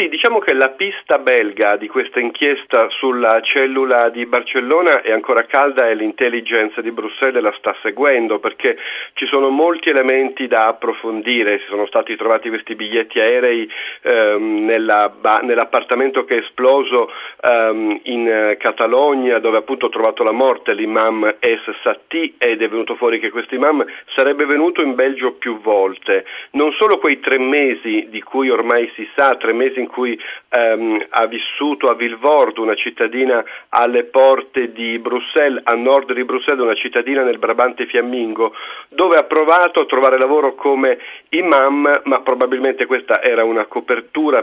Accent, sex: native, male